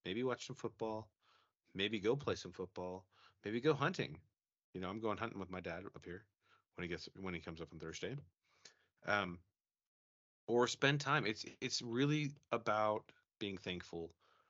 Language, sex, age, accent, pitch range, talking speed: English, male, 30-49, American, 85-120 Hz, 170 wpm